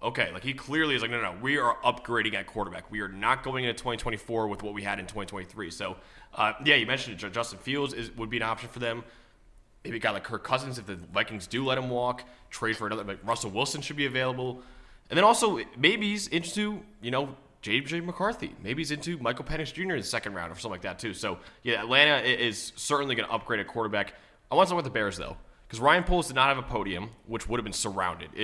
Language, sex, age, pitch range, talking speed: English, male, 20-39, 105-130 Hz, 245 wpm